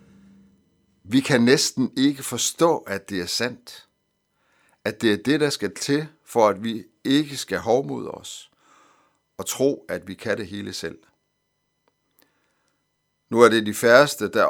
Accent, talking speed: native, 155 wpm